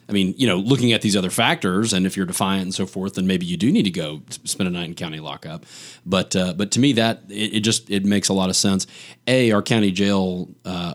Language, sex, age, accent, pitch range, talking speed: English, male, 30-49, American, 90-105 Hz, 270 wpm